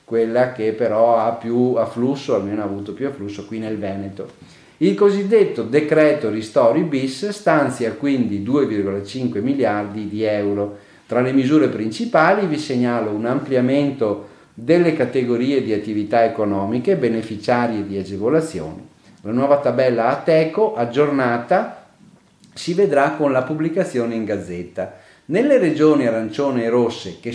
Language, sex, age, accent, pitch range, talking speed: Italian, male, 40-59, native, 110-145 Hz, 130 wpm